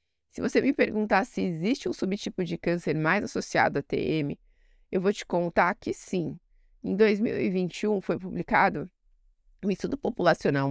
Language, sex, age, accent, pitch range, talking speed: Portuguese, female, 20-39, Brazilian, 155-210 Hz, 150 wpm